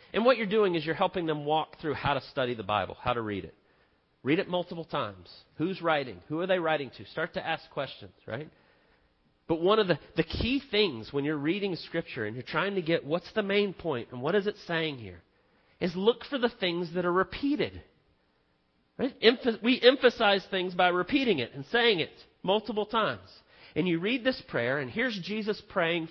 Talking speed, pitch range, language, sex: 205 wpm, 150-210 Hz, English, male